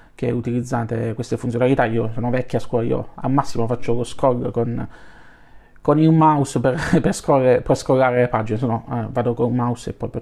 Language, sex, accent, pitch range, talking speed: Italian, male, native, 120-150 Hz, 205 wpm